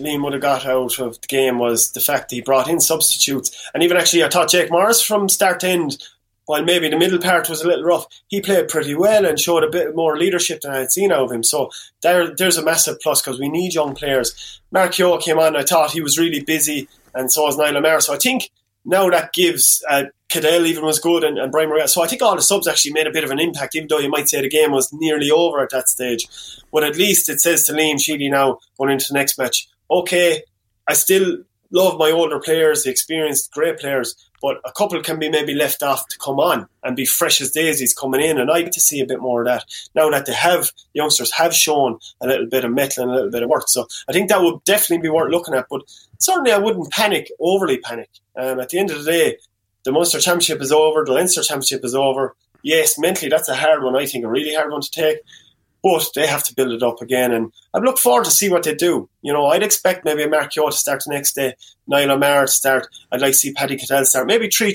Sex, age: male, 20-39